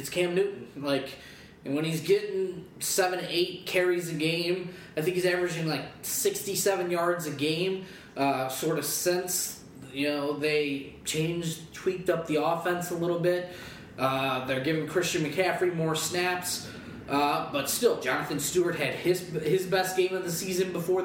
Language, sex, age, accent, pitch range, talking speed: English, male, 20-39, American, 155-180 Hz, 160 wpm